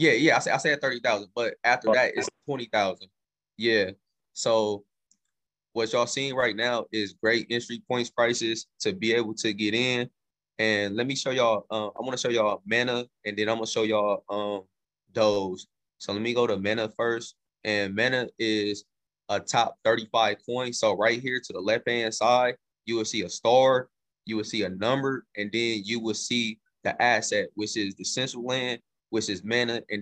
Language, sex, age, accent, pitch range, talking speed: English, male, 20-39, American, 105-130 Hz, 190 wpm